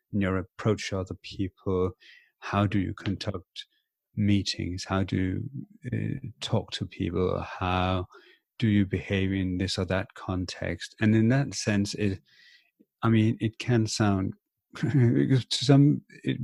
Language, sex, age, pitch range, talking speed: English, male, 30-49, 95-115 Hz, 140 wpm